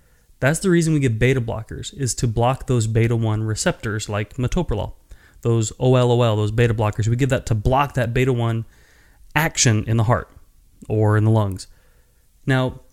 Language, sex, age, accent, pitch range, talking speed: English, male, 30-49, American, 110-130 Hz, 165 wpm